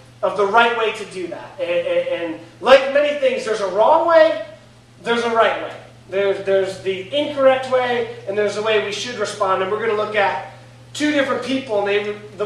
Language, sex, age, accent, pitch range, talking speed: English, male, 30-49, American, 205-260 Hz, 210 wpm